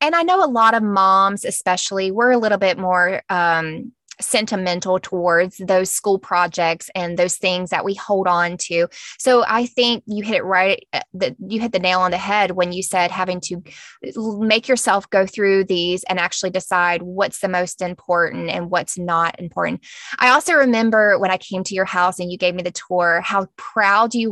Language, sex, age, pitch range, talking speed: English, female, 20-39, 185-240 Hz, 195 wpm